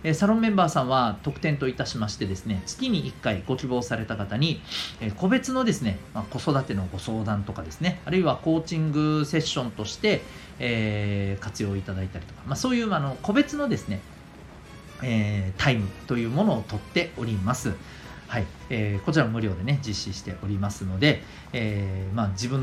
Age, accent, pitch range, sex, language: 40-59, native, 100-155 Hz, male, Japanese